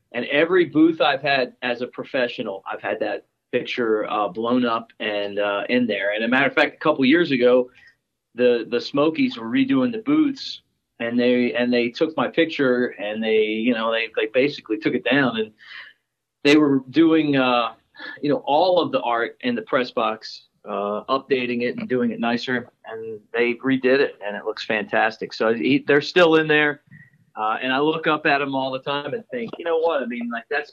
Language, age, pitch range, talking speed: English, 40-59, 125-210 Hz, 210 wpm